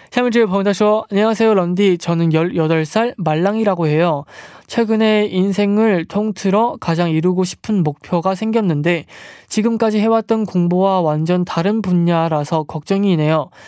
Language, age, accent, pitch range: Korean, 20-39, native, 160-200 Hz